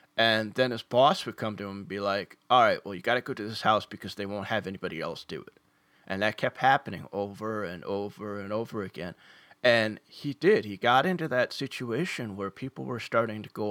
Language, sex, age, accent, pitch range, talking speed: English, male, 30-49, American, 105-125 Hz, 230 wpm